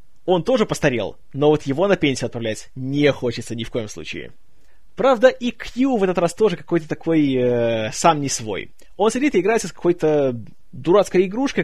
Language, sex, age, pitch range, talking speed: Russian, male, 20-39, 135-190 Hz, 185 wpm